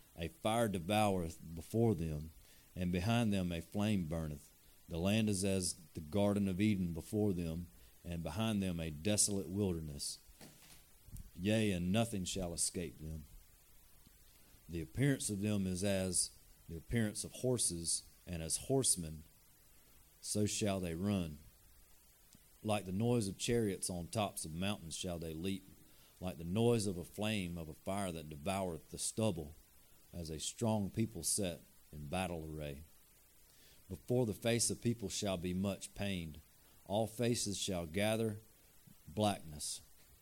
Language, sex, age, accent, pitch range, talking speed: English, male, 40-59, American, 85-105 Hz, 145 wpm